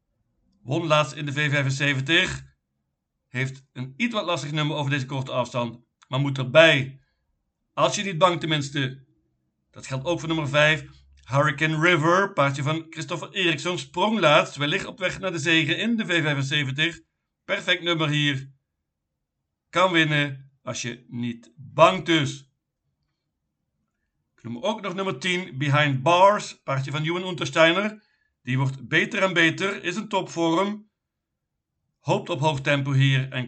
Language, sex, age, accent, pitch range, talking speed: Dutch, male, 50-69, Dutch, 135-170 Hz, 150 wpm